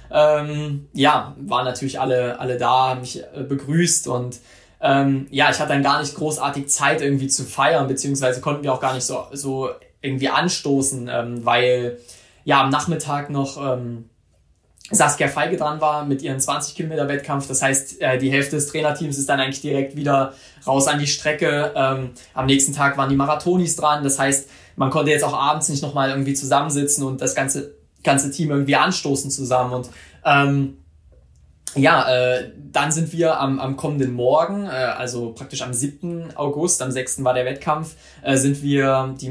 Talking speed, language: 175 wpm, German